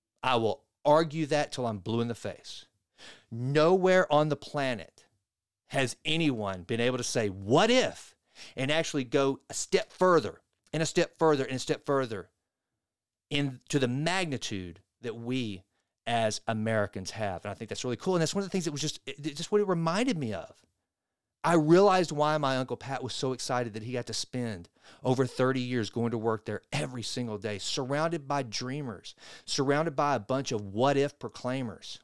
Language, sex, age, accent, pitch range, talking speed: English, male, 40-59, American, 110-150 Hz, 185 wpm